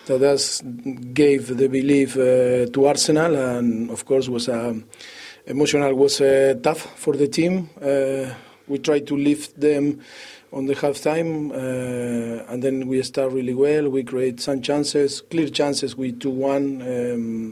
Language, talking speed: English, 160 wpm